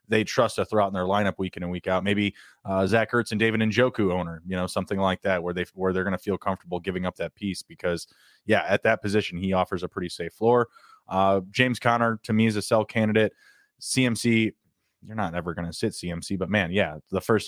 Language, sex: English, male